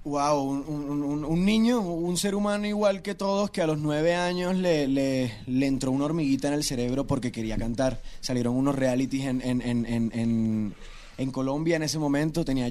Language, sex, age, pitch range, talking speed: Spanish, male, 20-39, 125-150 Hz, 205 wpm